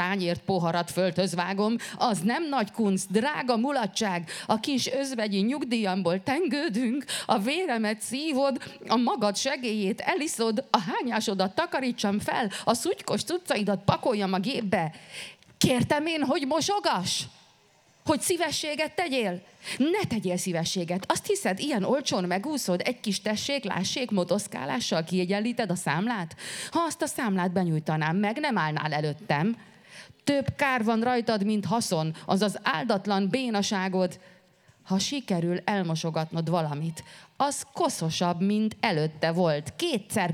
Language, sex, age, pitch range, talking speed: Hungarian, female, 30-49, 175-245 Hz, 120 wpm